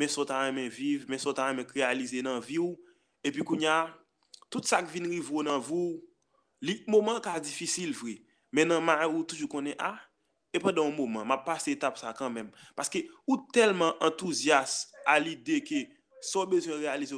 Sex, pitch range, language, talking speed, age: male, 135-220 Hz, French, 215 wpm, 20-39